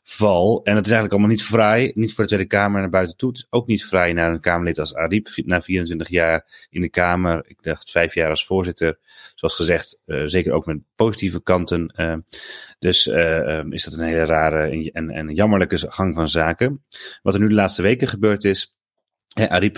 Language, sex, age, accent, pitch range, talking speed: Dutch, male, 30-49, Dutch, 80-100 Hz, 215 wpm